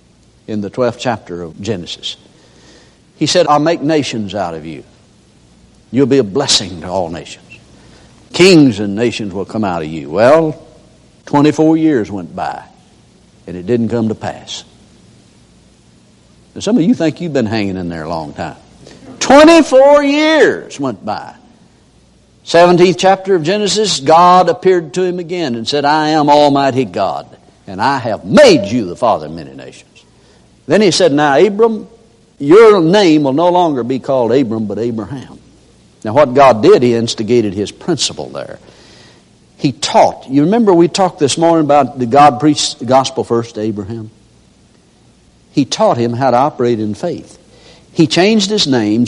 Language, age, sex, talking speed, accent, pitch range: English, 60-79, male, 165 wpm, American, 110-170 Hz